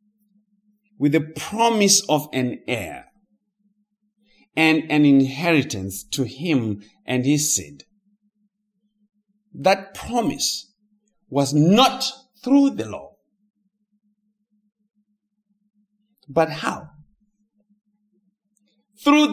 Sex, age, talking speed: male, 50-69, 75 wpm